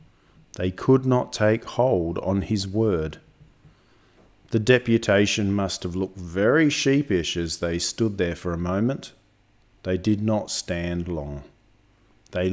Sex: male